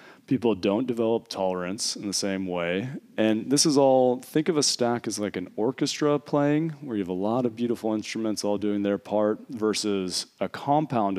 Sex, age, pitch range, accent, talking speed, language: male, 30-49, 95-130 Hz, American, 195 wpm, English